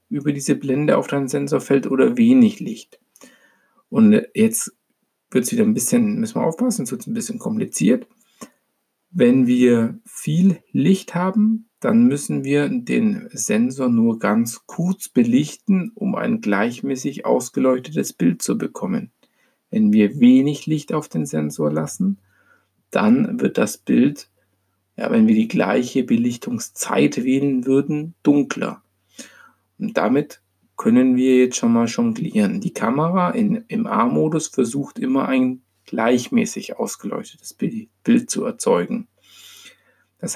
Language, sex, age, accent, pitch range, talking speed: German, male, 50-69, German, 140-235 Hz, 130 wpm